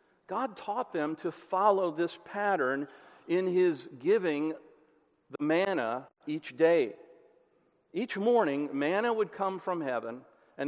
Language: English